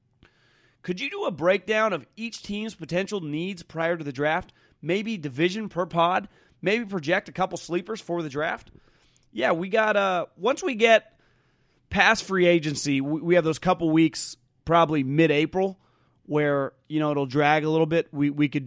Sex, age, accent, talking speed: male, 30-49, American, 175 wpm